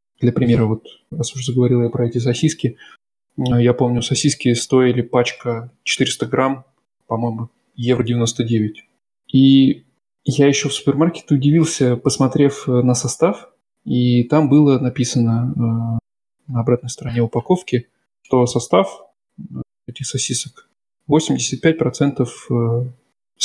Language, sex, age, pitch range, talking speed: Russian, male, 20-39, 120-135 Hz, 105 wpm